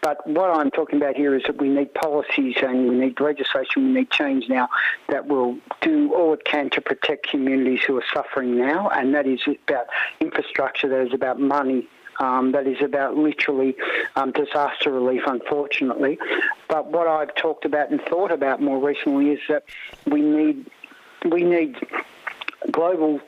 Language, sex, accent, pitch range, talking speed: English, male, Australian, 135-175 Hz, 175 wpm